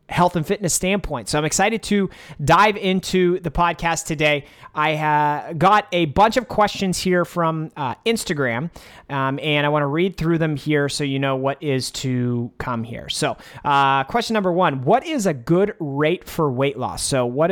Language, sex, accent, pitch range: English, male, American, 135-175 Hz